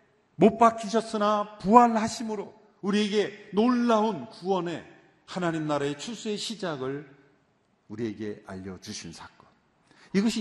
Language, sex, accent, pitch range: Korean, male, native, 135-195 Hz